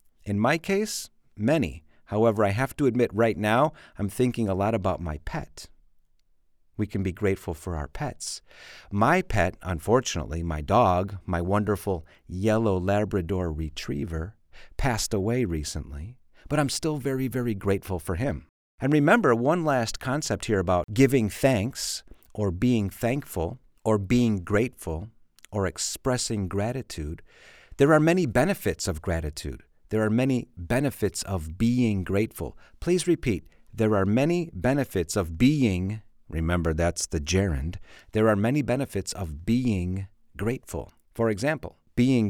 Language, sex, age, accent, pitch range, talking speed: English, male, 40-59, American, 85-115 Hz, 140 wpm